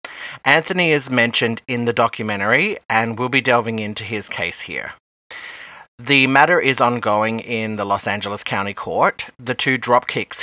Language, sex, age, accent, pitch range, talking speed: English, male, 30-49, Australian, 105-125 Hz, 155 wpm